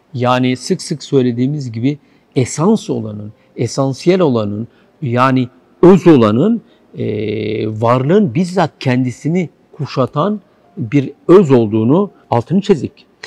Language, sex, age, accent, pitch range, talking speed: Turkish, male, 60-79, native, 110-150 Hz, 95 wpm